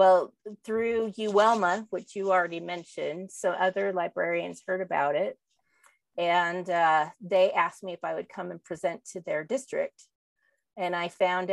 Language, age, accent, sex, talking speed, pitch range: English, 30-49, American, female, 155 wpm, 175-200 Hz